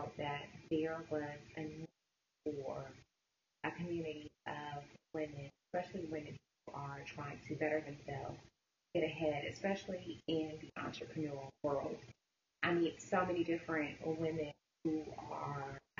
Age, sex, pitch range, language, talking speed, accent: 20-39, female, 145-160 Hz, English, 125 wpm, American